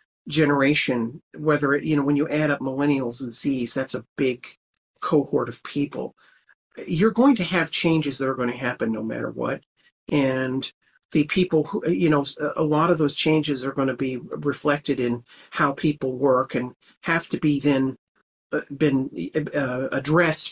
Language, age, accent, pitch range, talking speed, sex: English, 50-69, American, 130-155 Hz, 170 wpm, male